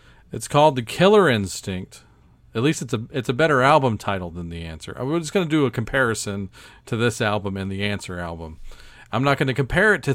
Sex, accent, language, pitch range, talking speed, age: male, American, English, 110-145 Hz, 230 wpm, 40-59